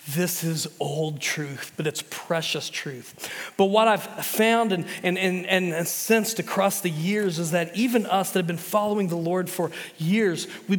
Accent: American